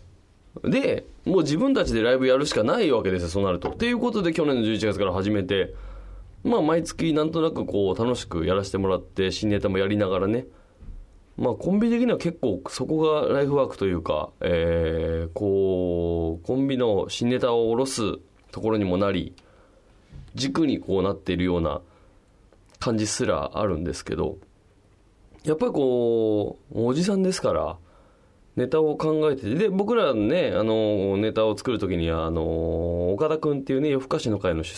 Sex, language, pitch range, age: male, Japanese, 95-135 Hz, 20-39